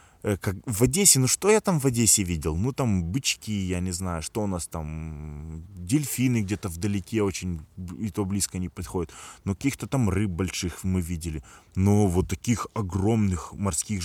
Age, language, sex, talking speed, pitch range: 20-39, Russian, male, 175 wpm, 90-115 Hz